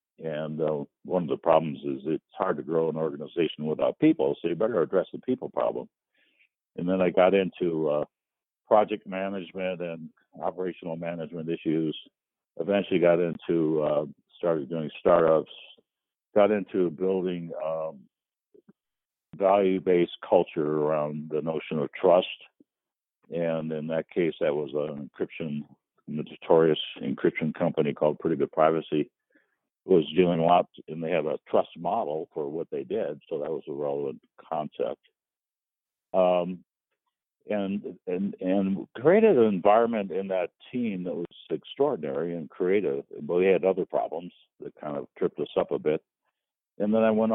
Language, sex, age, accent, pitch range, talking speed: English, male, 60-79, American, 80-110 Hz, 150 wpm